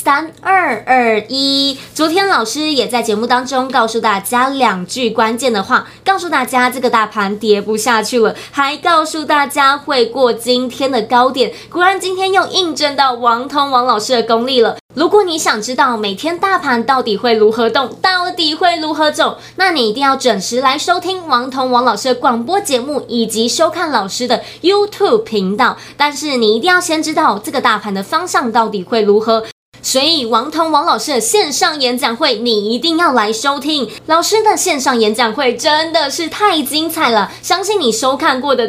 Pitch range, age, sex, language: 235-335 Hz, 20-39, female, Chinese